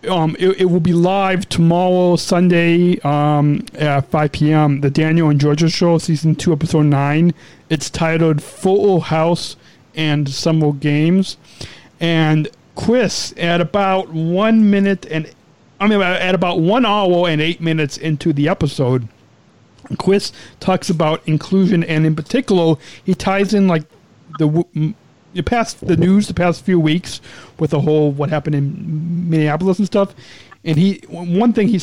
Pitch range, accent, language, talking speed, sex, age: 145-175 Hz, American, English, 155 wpm, male, 40-59